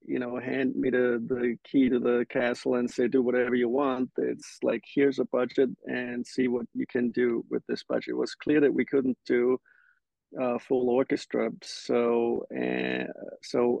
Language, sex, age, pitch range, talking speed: English, male, 50-69, 120-135 Hz, 185 wpm